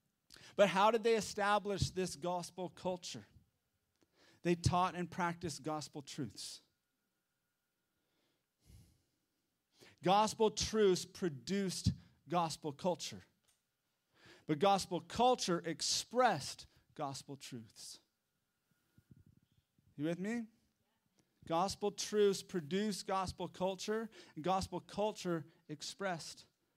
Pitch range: 150-205 Hz